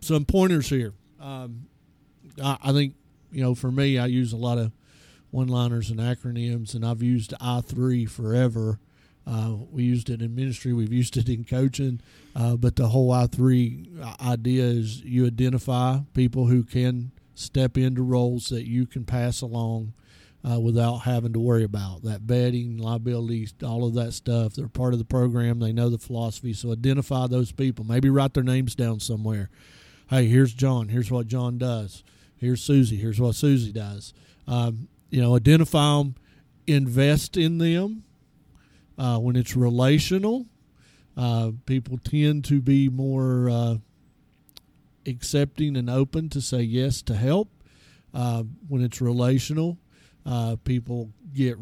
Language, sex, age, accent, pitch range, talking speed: English, male, 50-69, American, 120-135 Hz, 155 wpm